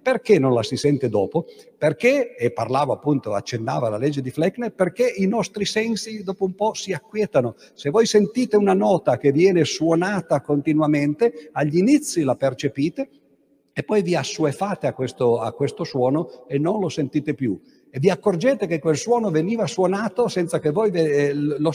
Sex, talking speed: male, 170 wpm